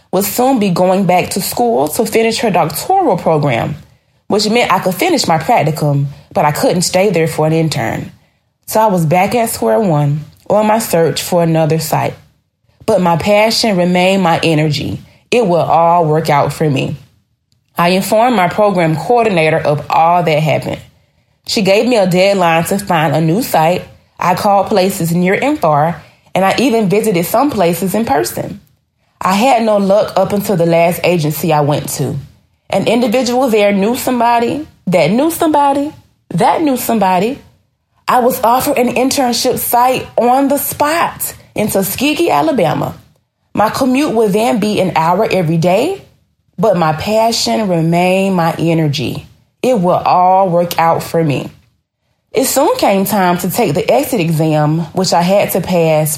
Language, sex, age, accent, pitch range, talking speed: English, female, 20-39, American, 160-225 Hz, 170 wpm